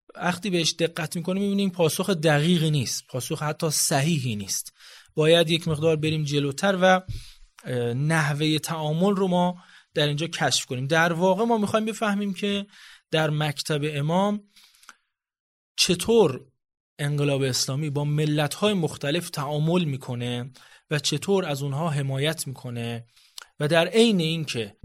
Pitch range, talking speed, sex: 140-185 Hz, 130 wpm, male